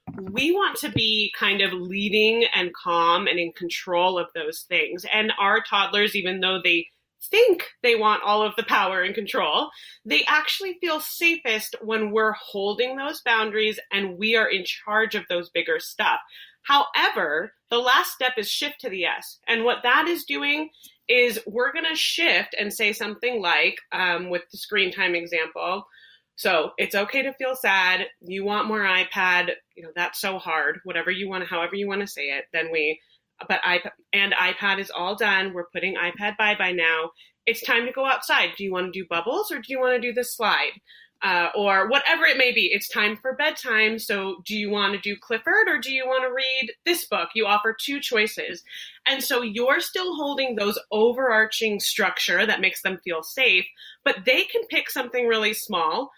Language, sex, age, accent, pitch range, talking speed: English, female, 30-49, American, 190-260 Hz, 195 wpm